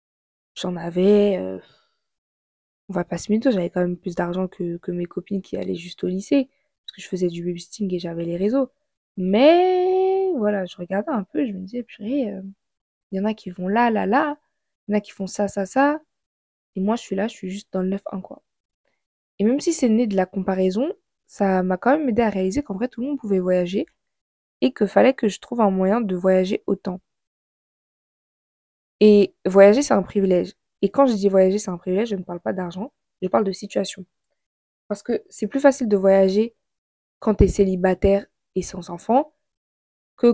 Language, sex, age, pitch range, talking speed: French, female, 20-39, 185-235 Hz, 210 wpm